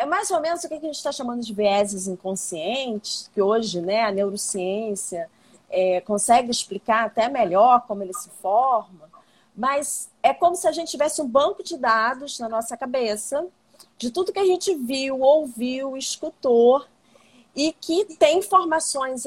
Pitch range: 210-290 Hz